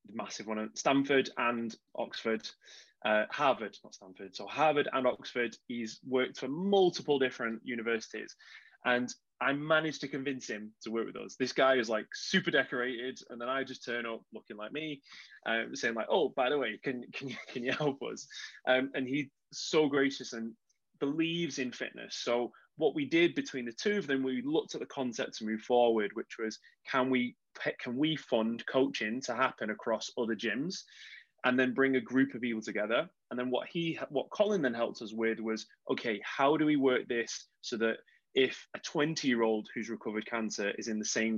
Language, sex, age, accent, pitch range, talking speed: English, male, 20-39, British, 110-135 Hz, 195 wpm